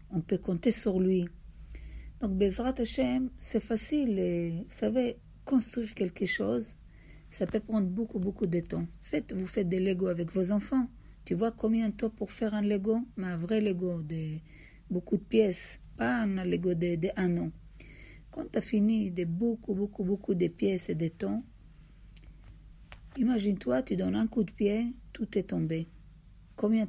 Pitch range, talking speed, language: 175-220 Hz, 170 wpm, French